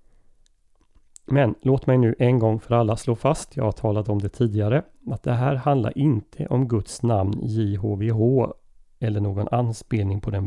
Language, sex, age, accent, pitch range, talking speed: Swedish, male, 30-49, native, 105-130 Hz, 170 wpm